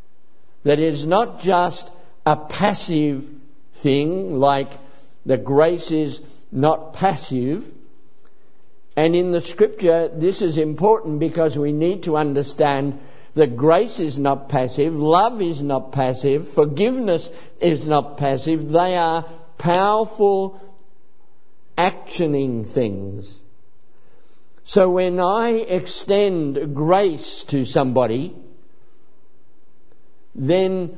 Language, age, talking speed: English, 60-79, 100 wpm